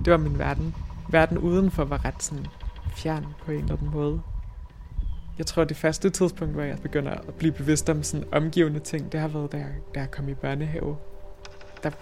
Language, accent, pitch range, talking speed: Danish, native, 100-170 Hz, 210 wpm